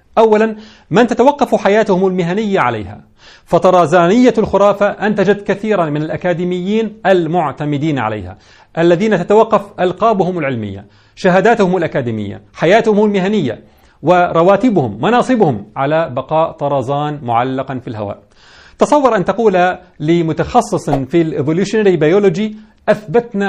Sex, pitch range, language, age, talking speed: male, 140-195 Hz, Arabic, 40-59, 100 wpm